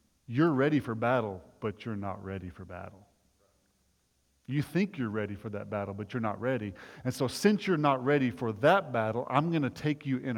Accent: American